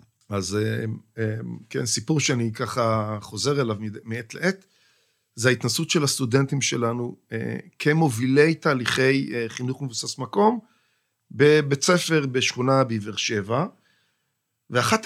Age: 40-59